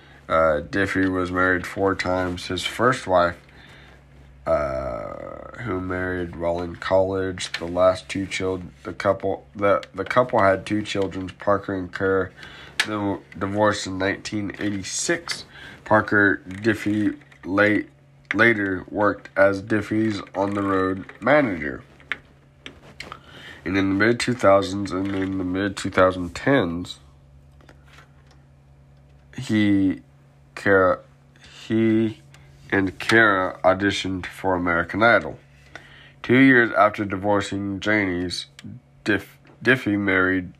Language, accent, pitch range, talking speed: English, American, 90-105 Hz, 110 wpm